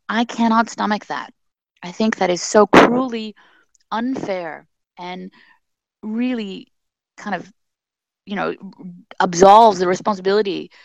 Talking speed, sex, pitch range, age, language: 110 wpm, female, 175-230 Hz, 20-39, English